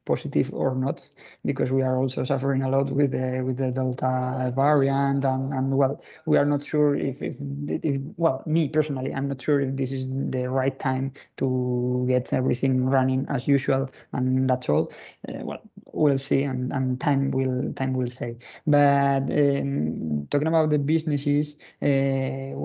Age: 20-39